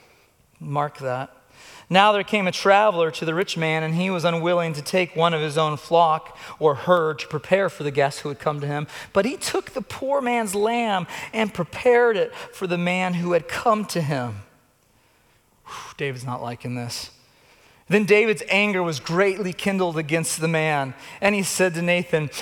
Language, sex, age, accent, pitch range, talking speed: English, male, 40-59, American, 145-205 Hz, 185 wpm